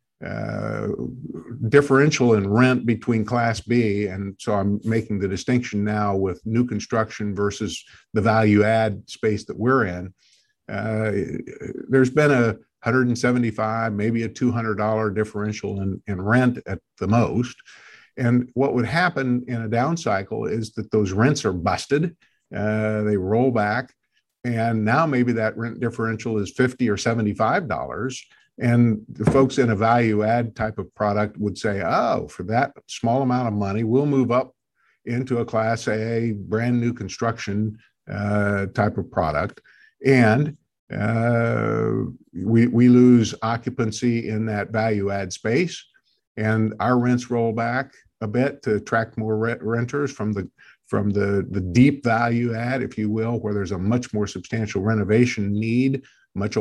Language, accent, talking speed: English, American, 150 wpm